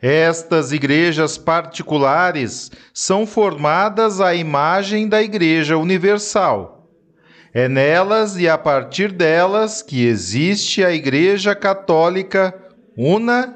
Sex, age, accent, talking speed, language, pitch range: male, 40-59, Brazilian, 95 wpm, Portuguese, 150-200 Hz